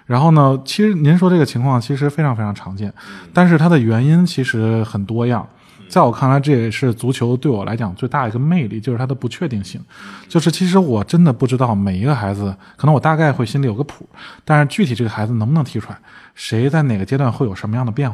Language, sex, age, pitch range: Chinese, male, 20-39, 110-150 Hz